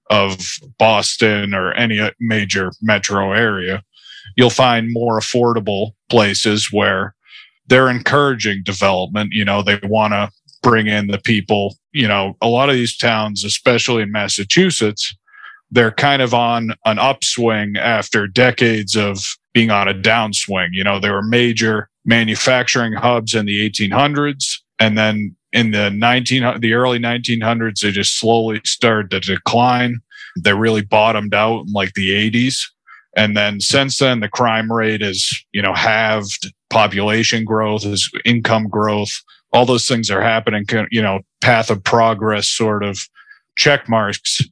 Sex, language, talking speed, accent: male, English, 150 wpm, American